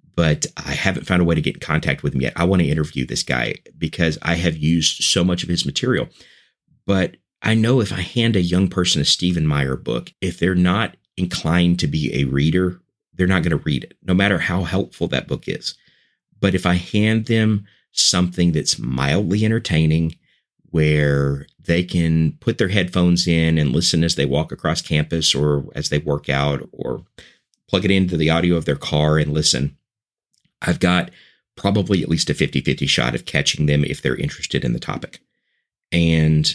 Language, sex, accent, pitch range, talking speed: English, male, American, 75-90 Hz, 195 wpm